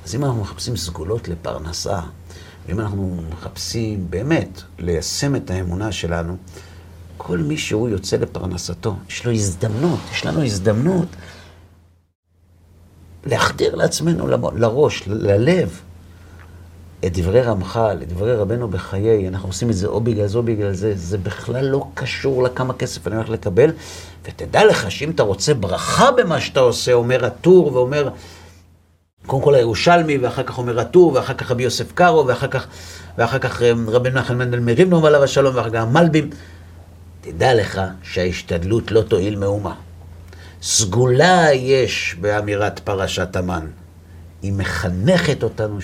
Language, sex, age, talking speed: Hebrew, male, 50-69, 140 wpm